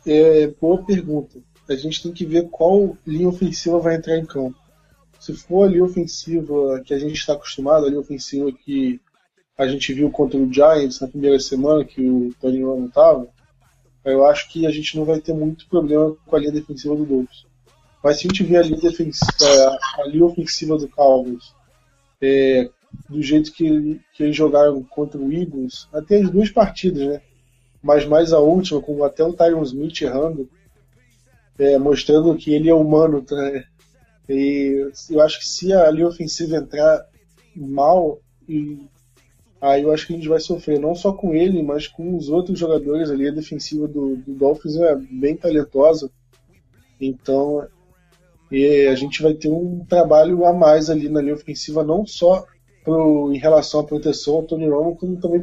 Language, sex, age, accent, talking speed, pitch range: Portuguese, male, 20-39, Brazilian, 180 wpm, 140-165 Hz